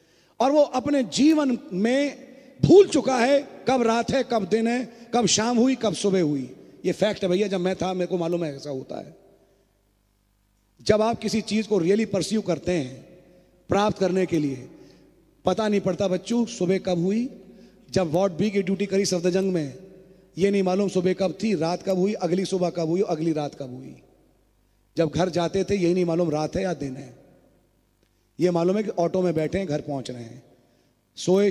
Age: 30-49